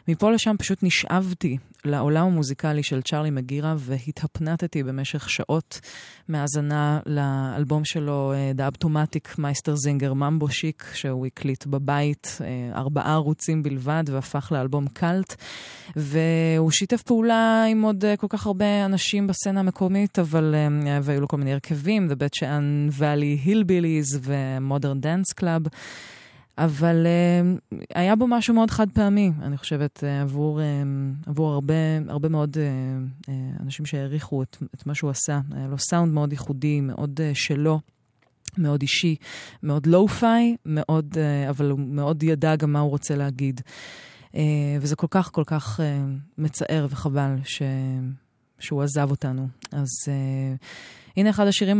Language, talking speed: Hebrew, 125 wpm